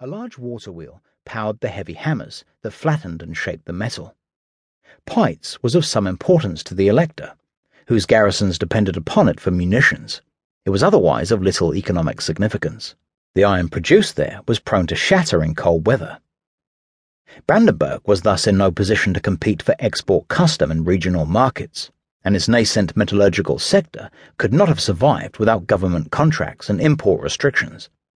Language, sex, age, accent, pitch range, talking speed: English, male, 40-59, British, 90-115 Hz, 160 wpm